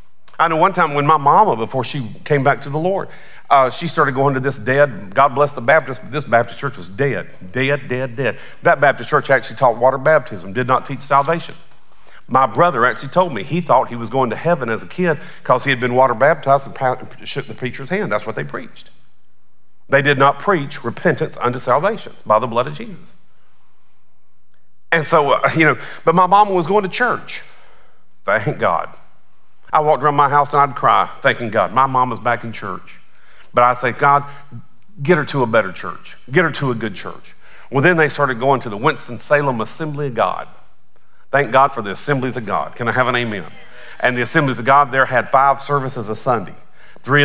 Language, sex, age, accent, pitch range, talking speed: English, male, 40-59, American, 120-145 Hz, 215 wpm